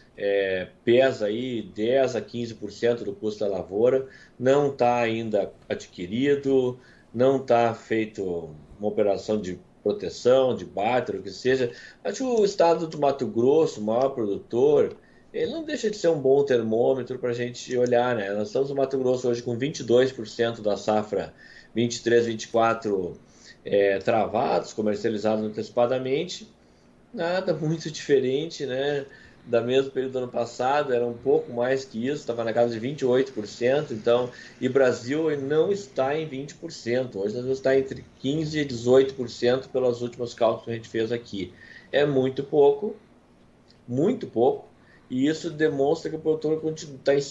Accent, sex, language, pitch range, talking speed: Brazilian, male, Portuguese, 115-145 Hz, 150 wpm